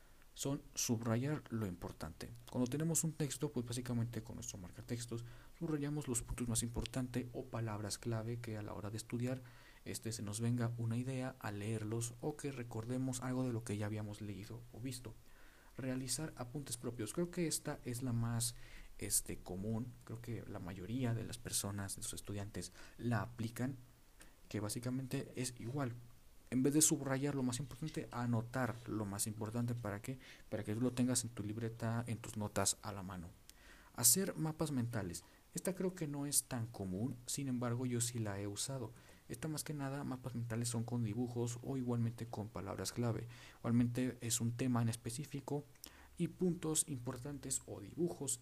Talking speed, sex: 175 wpm, male